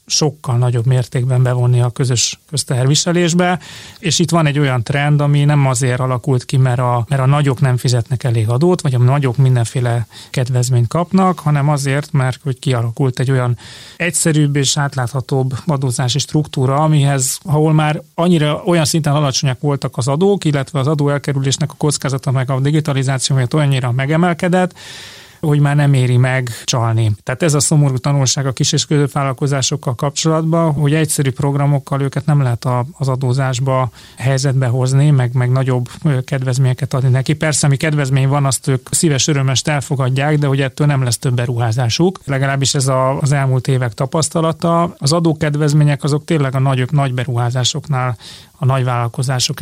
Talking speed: 155 wpm